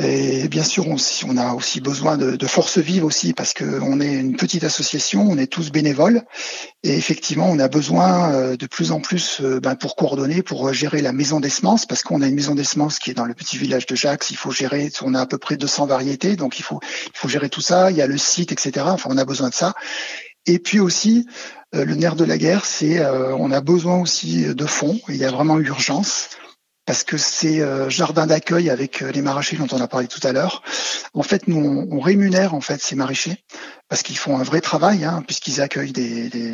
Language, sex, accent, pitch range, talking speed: French, male, French, 135-175 Hz, 225 wpm